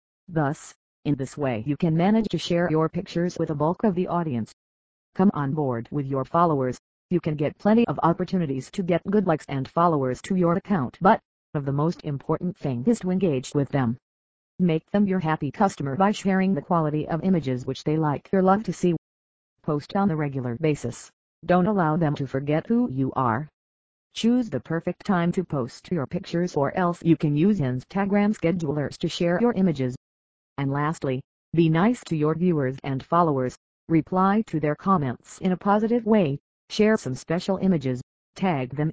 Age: 40-59